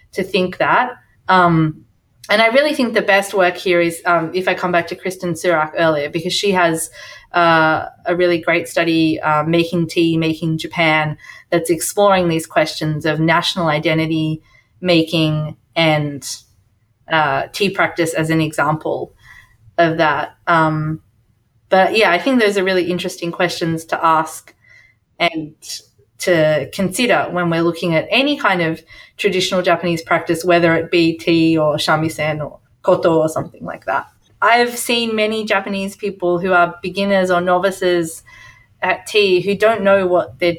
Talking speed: 155 wpm